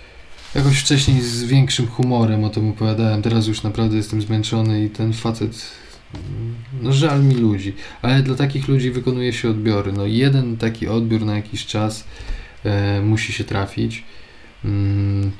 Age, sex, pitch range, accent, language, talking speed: 20-39, male, 105-125 Hz, native, Polish, 150 wpm